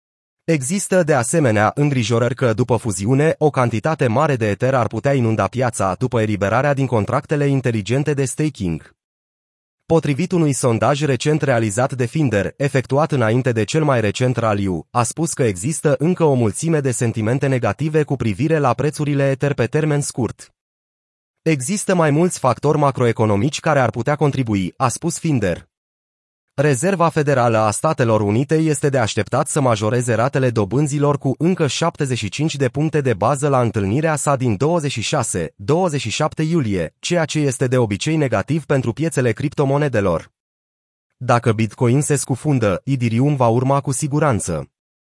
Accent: native